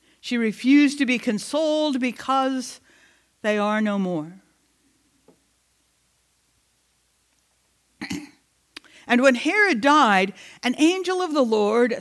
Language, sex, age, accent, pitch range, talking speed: English, female, 60-79, American, 210-270 Hz, 95 wpm